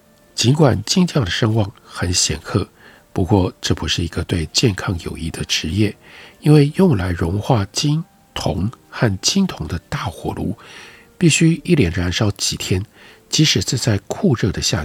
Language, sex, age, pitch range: Chinese, male, 60-79, 95-140 Hz